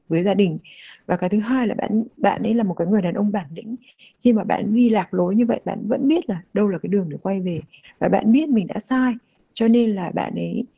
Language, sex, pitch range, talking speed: Vietnamese, female, 185-230 Hz, 275 wpm